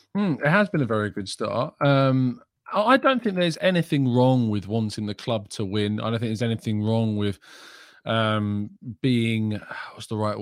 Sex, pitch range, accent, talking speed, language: male, 105-130 Hz, British, 190 wpm, English